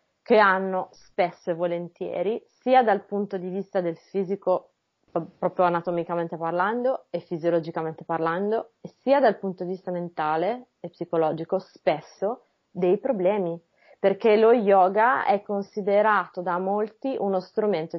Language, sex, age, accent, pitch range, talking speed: Italian, female, 20-39, native, 175-210 Hz, 125 wpm